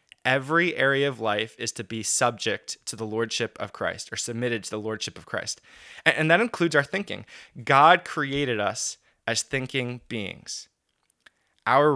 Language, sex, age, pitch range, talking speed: English, male, 20-39, 115-145 Hz, 165 wpm